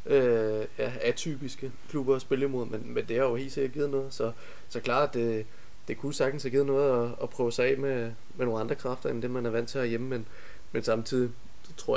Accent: native